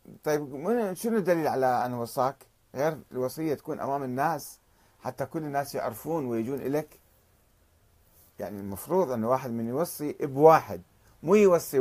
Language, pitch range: Arabic, 105-150 Hz